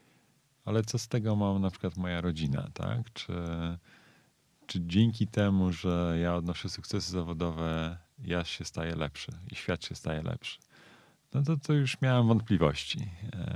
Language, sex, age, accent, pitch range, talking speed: Polish, male, 40-59, native, 85-110 Hz, 150 wpm